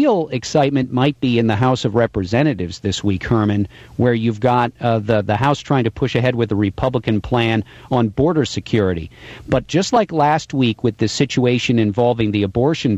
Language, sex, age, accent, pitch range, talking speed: English, male, 50-69, American, 110-130 Hz, 190 wpm